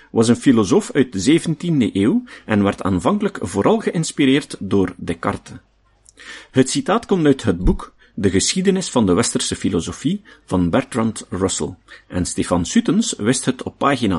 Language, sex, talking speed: Dutch, male, 150 wpm